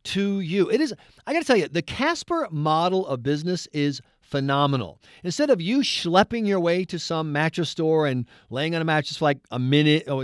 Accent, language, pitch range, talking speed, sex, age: American, English, 140-200 Hz, 205 wpm, male, 50-69